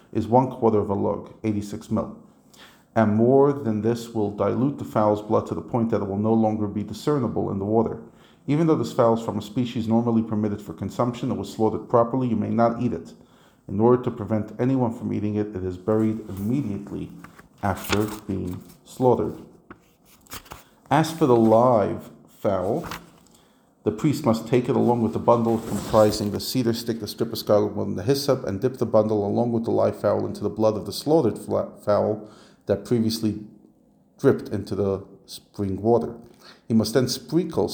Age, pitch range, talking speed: 40-59, 105-120 Hz, 190 wpm